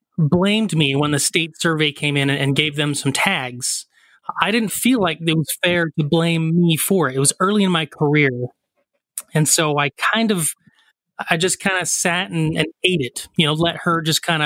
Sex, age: male, 30-49